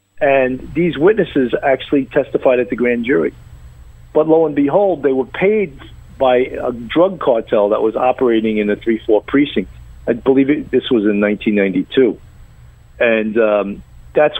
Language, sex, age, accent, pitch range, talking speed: English, male, 50-69, American, 105-145 Hz, 150 wpm